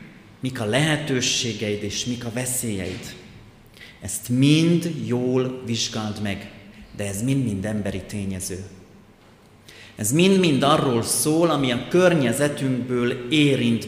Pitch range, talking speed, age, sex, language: 105-130 Hz, 110 wpm, 30-49, male, Hungarian